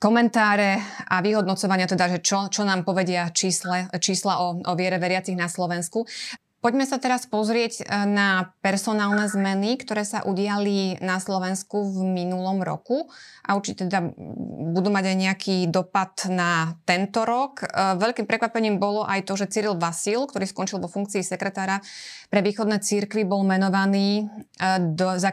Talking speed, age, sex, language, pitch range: 145 wpm, 20-39, female, Slovak, 180-205 Hz